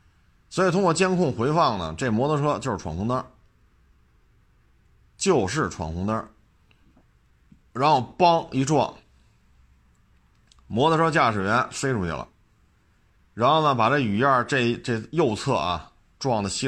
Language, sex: Chinese, male